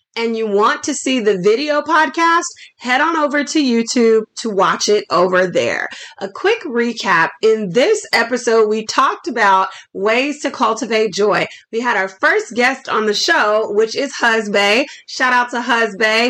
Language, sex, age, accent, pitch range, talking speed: English, female, 30-49, American, 210-290 Hz, 170 wpm